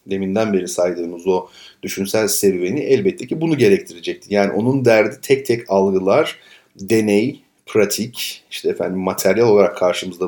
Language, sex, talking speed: Turkish, male, 135 wpm